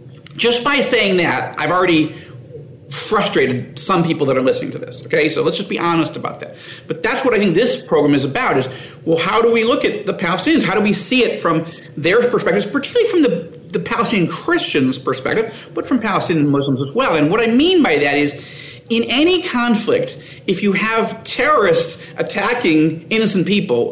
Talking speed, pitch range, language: 195 wpm, 150-235 Hz, English